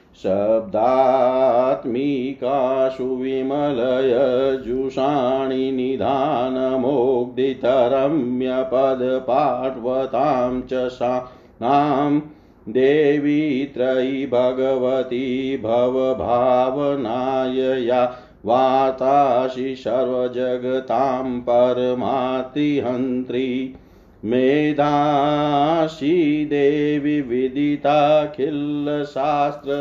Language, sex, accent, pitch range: Hindi, male, native, 130-145 Hz